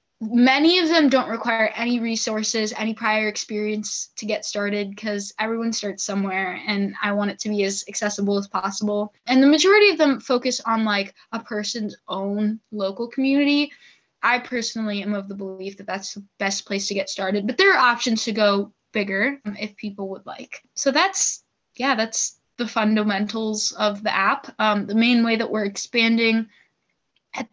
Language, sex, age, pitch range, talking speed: English, female, 10-29, 205-240 Hz, 180 wpm